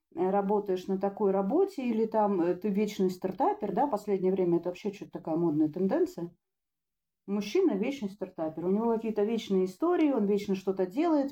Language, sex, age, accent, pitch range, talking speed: Russian, female, 40-59, native, 185-235 Hz, 170 wpm